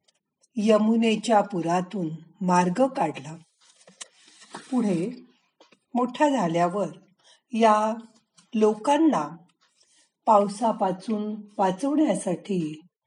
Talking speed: 50 wpm